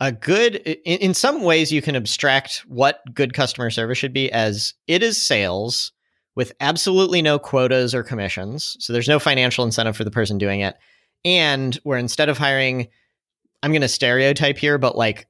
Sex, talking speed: male, 180 wpm